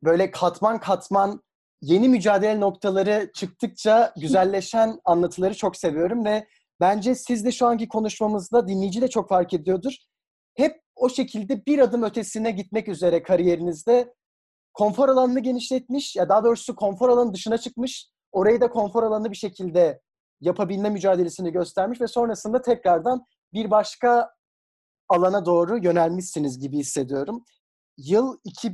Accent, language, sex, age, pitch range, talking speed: native, Turkish, male, 30-49, 185-240 Hz, 130 wpm